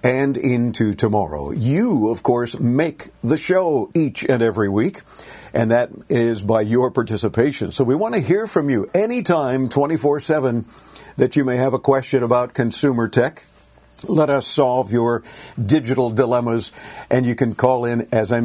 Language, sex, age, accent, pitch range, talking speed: English, male, 50-69, American, 115-140 Hz, 165 wpm